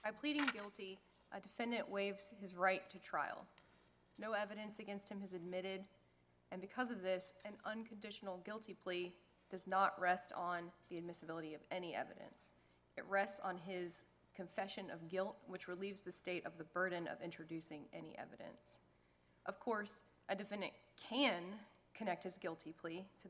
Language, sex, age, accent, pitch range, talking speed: English, female, 30-49, American, 165-195 Hz, 155 wpm